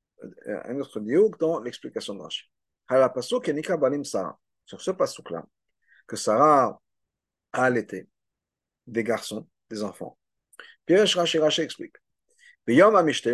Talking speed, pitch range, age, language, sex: 90 wpm, 125-190 Hz, 50-69, French, male